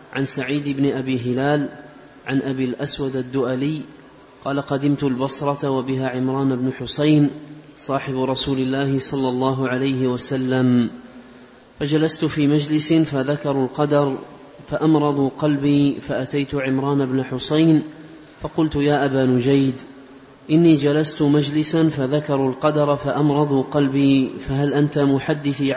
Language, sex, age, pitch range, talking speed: Arabic, male, 30-49, 135-155 Hz, 110 wpm